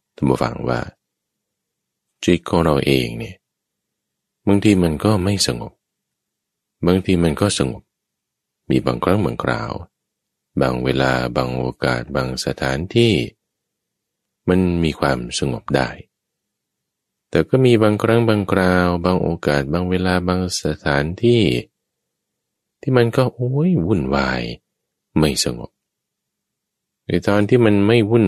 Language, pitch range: English, 70-110 Hz